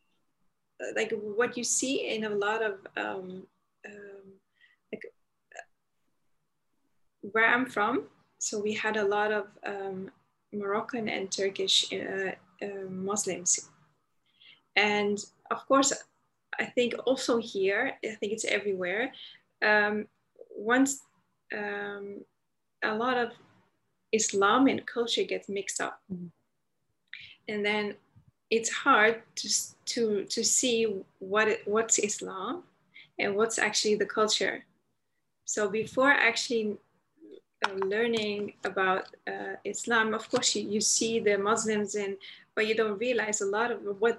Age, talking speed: 20-39, 120 wpm